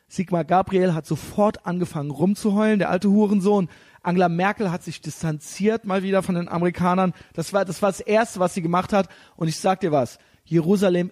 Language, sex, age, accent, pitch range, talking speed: German, male, 30-49, German, 145-175 Hz, 190 wpm